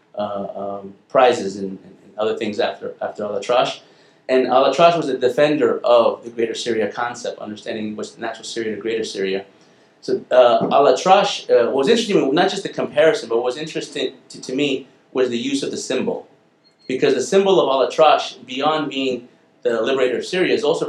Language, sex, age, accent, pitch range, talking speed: English, male, 30-49, American, 110-165 Hz, 190 wpm